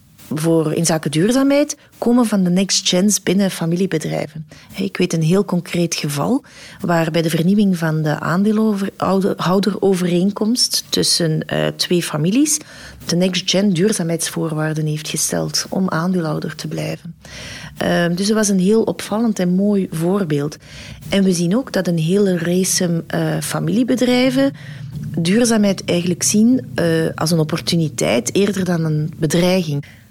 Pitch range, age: 165-205 Hz, 40-59